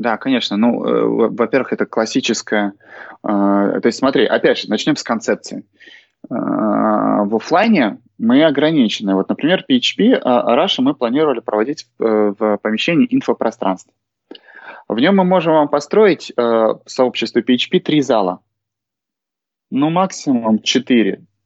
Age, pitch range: 20-39, 115-185 Hz